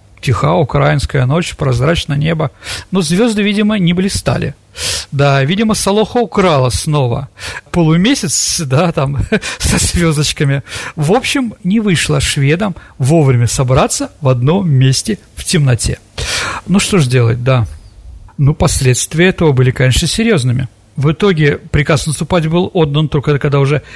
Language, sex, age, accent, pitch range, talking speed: Russian, male, 40-59, native, 130-185 Hz, 130 wpm